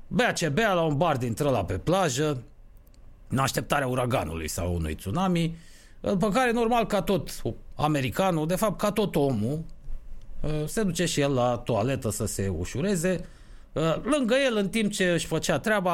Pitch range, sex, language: 115-190 Hz, male, Romanian